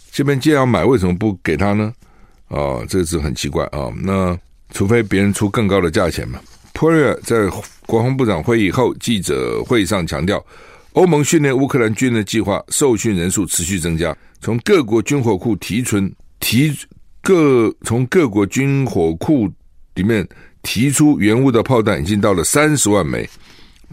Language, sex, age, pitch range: Chinese, male, 60-79, 95-140 Hz